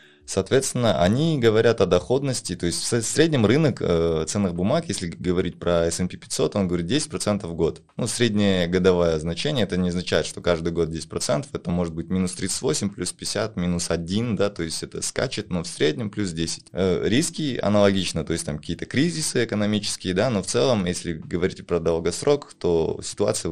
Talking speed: 185 wpm